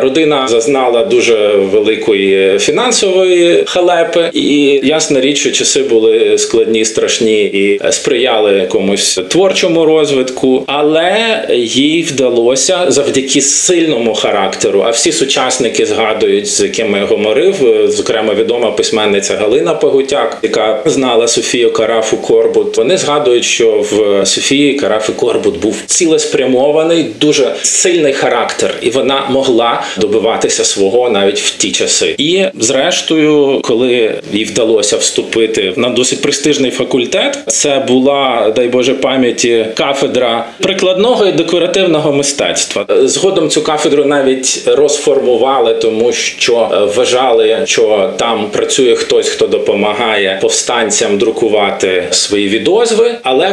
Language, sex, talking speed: Ukrainian, male, 115 wpm